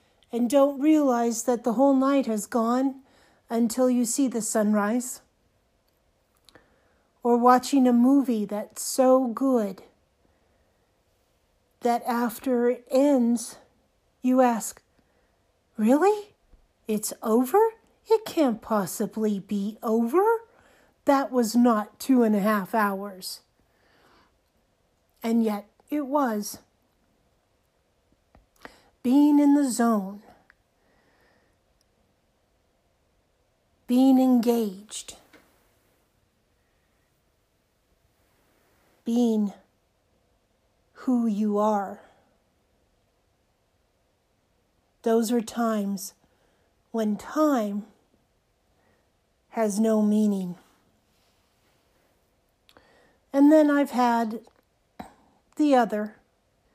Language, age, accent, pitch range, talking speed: English, 60-79, American, 220-265 Hz, 75 wpm